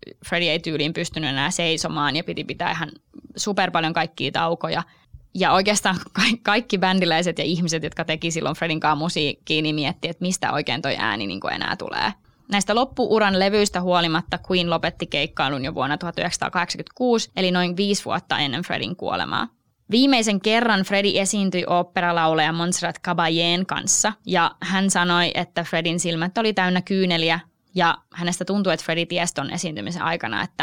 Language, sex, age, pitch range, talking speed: Finnish, female, 20-39, 165-195 Hz, 155 wpm